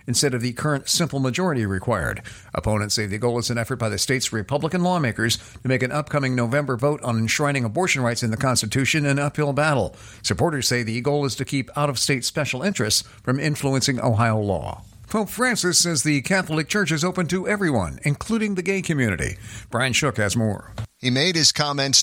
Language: English